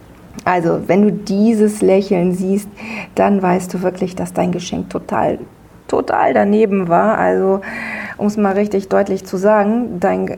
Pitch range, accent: 175-215 Hz, German